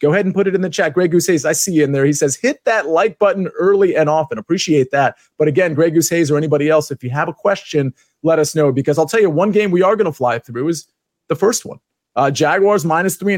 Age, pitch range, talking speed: 30-49, 145-190 Hz, 285 wpm